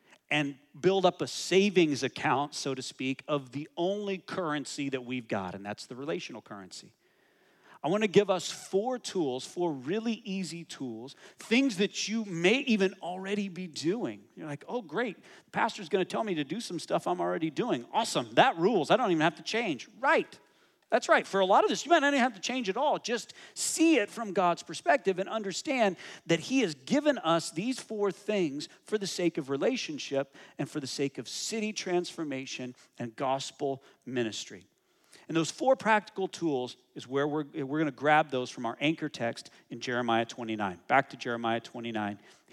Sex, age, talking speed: male, 40-59, 195 wpm